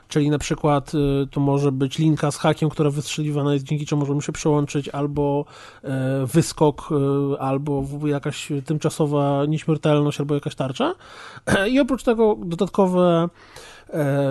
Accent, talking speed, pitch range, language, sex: native, 125 wpm, 140-165 Hz, Polish, male